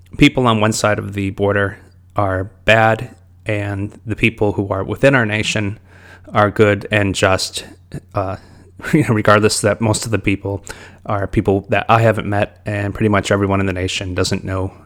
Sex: male